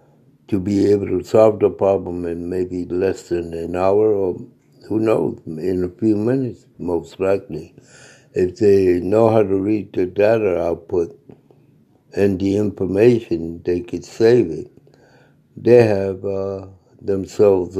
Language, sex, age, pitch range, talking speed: English, male, 60-79, 90-110 Hz, 140 wpm